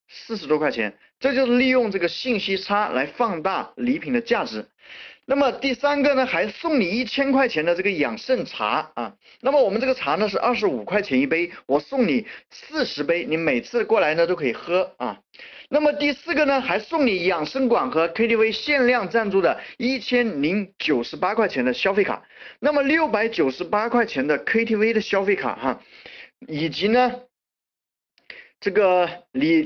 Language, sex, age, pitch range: Chinese, male, 30-49, 205-270 Hz